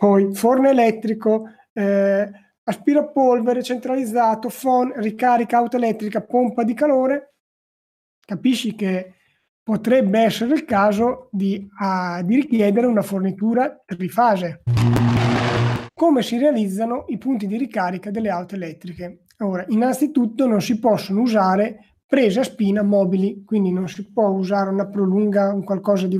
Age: 30-49